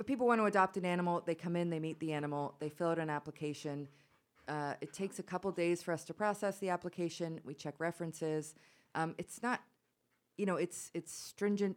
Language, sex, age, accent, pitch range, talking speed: English, female, 30-49, American, 135-165 Hz, 215 wpm